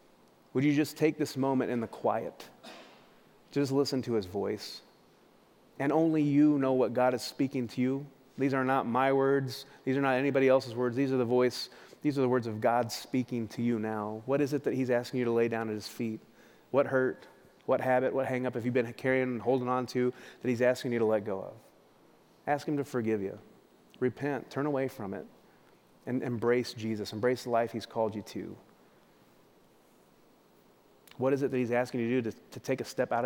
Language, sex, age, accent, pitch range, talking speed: English, male, 30-49, American, 115-135 Hz, 215 wpm